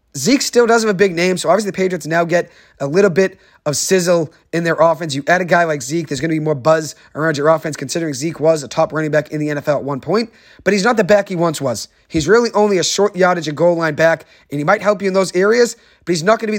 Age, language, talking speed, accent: 30-49, English, 295 wpm, American